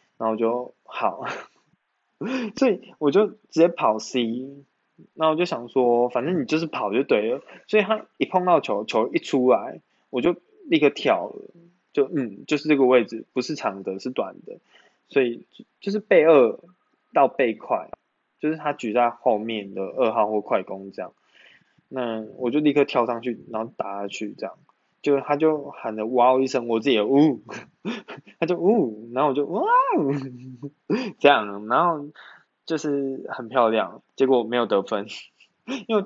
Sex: male